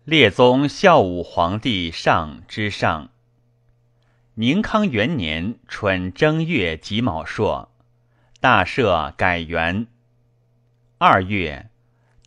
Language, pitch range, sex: Chinese, 105-120 Hz, male